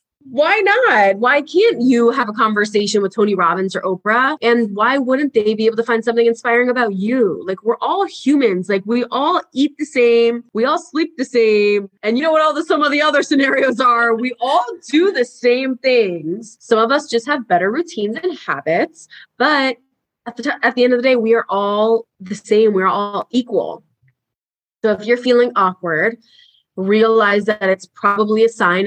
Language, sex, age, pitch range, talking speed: English, female, 20-39, 195-265 Hz, 200 wpm